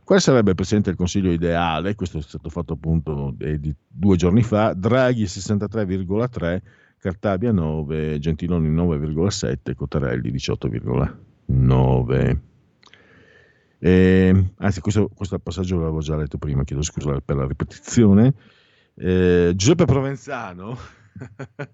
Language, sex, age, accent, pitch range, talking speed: Italian, male, 50-69, native, 80-115 Hz, 110 wpm